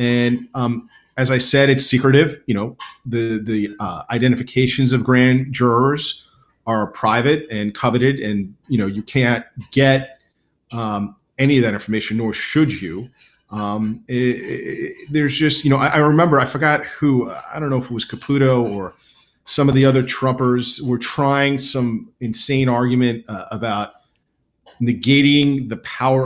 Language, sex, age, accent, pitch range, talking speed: English, male, 40-59, American, 110-135 Hz, 160 wpm